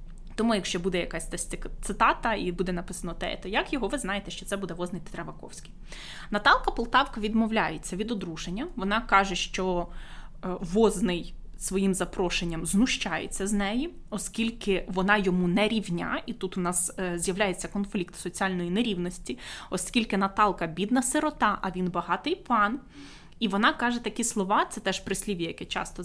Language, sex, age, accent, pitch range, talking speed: Ukrainian, female, 20-39, native, 180-225 Hz, 145 wpm